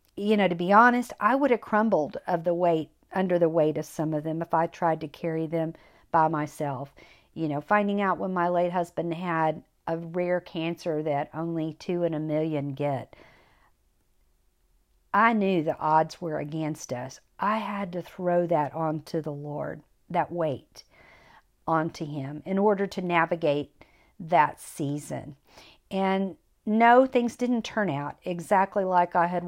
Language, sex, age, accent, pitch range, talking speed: English, female, 50-69, American, 155-205 Hz, 165 wpm